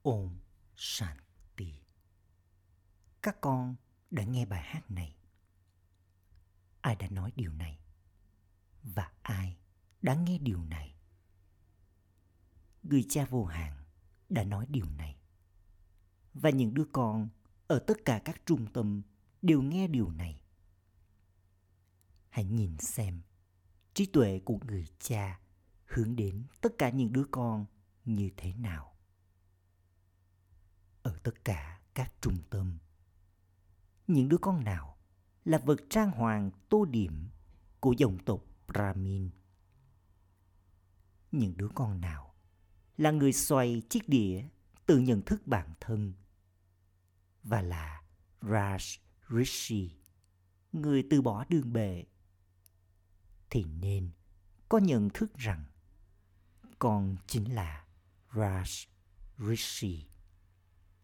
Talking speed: 110 wpm